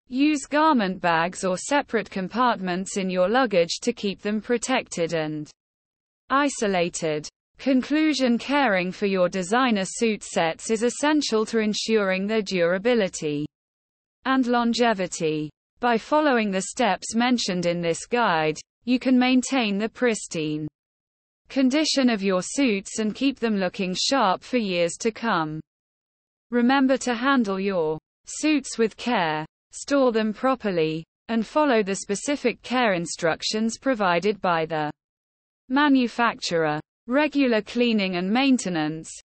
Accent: British